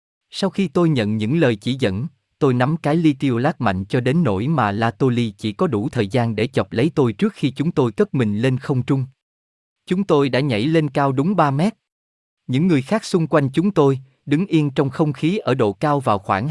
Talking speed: 235 wpm